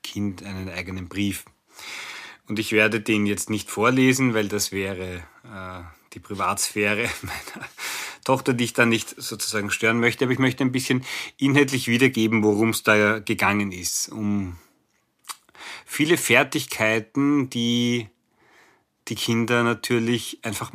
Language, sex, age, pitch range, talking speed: German, male, 40-59, 100-120 Hz, 135 wpm